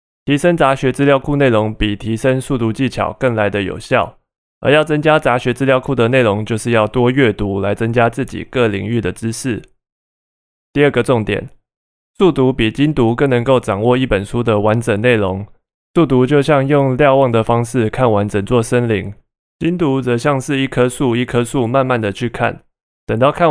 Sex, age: male, 20-39